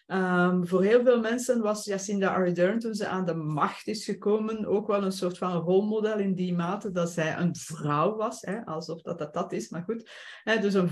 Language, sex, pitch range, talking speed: Dutch, female, 180-205 Hz, 205 wpm